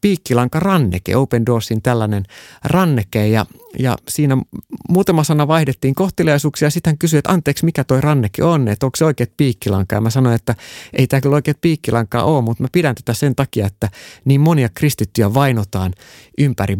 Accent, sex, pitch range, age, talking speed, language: native, male, 105-140 Hz, 30-49, 170 wpm, Finnish